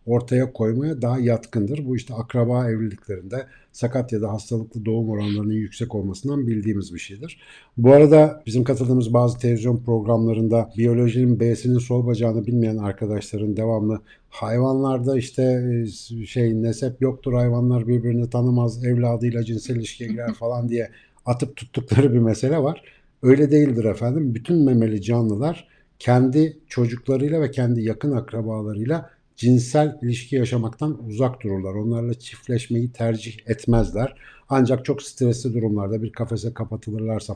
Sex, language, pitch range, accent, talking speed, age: male, Turkish, 110-130 Hz, native, 125 wpm, 60-79